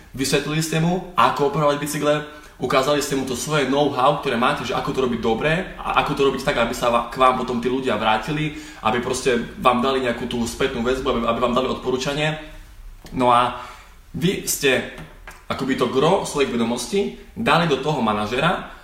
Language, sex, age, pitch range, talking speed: Slovak, male, 20-39, 125-160 Hz, 180 wpm